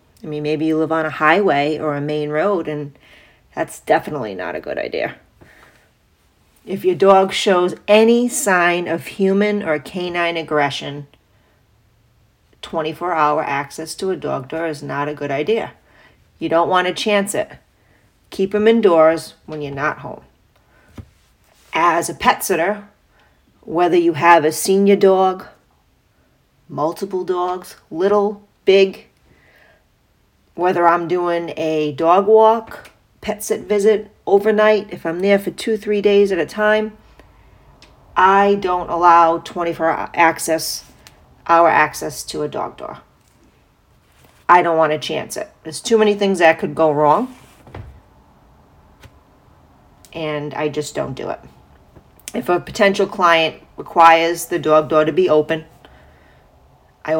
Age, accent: 40-59, American